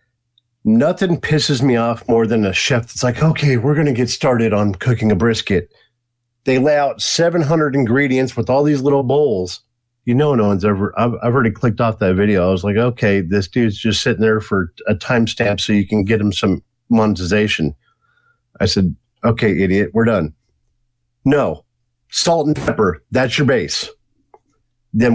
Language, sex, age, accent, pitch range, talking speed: English, male, 50-69, American, 115-155 Hz, 180 wpm